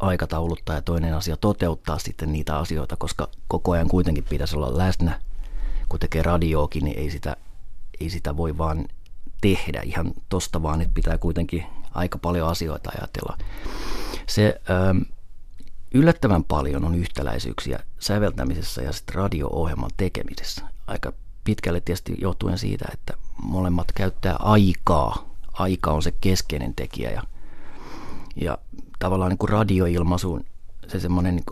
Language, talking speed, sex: Finnish, 130 wpm, male